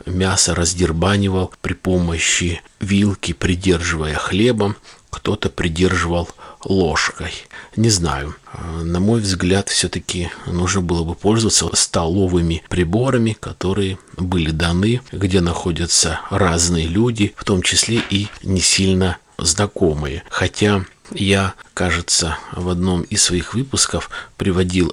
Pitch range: 85-100 Hz